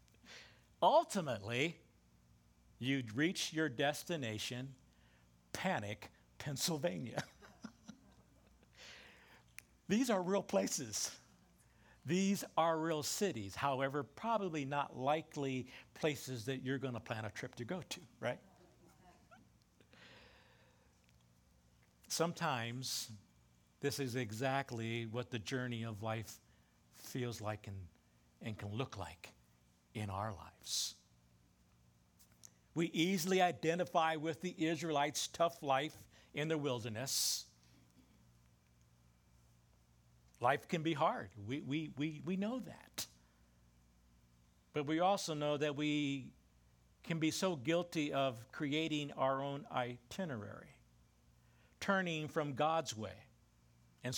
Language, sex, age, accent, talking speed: English, male, 60-79, American, 100 wpm